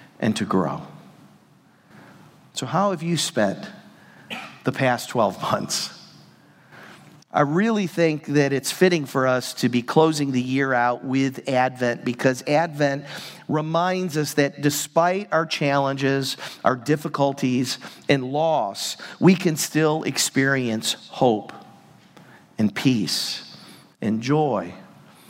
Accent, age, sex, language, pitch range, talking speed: American, 50-69, male, English, 130-160 Hz, 115 wpm